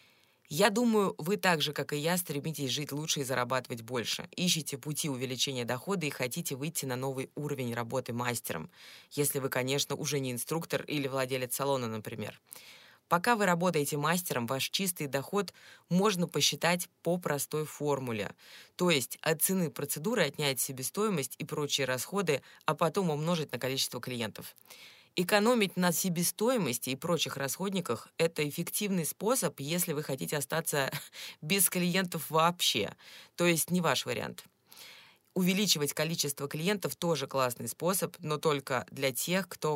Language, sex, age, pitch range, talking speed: Russian, female, 20-39, 135-175 Hz, 145 wpm